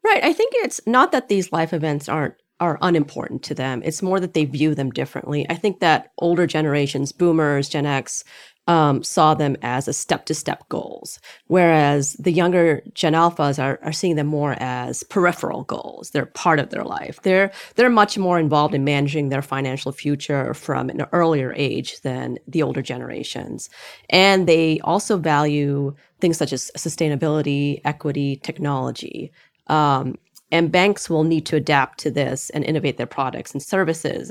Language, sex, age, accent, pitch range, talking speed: English, female, 30-49, American, 140-175 Hz, 175 wpm